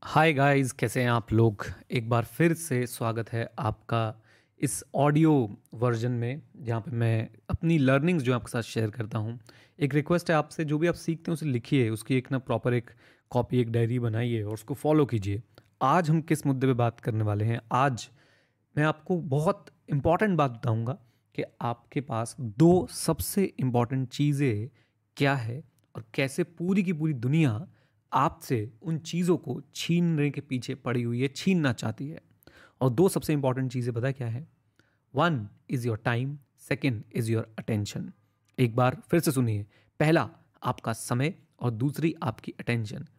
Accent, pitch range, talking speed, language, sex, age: native, 115-150 Hz, 175 wpm, Hindi, male, 30-49